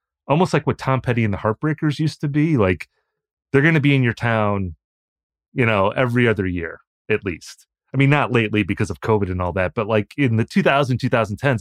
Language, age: English, 30-49